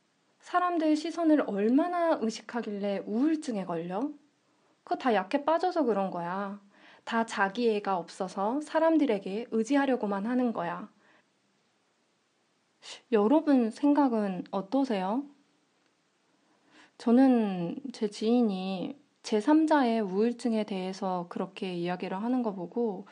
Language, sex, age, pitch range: Korean, female, 20-39, 200-280 Hz